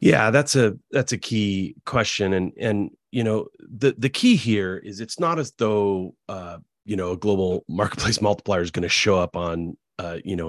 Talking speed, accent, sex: 205 wpm, American, male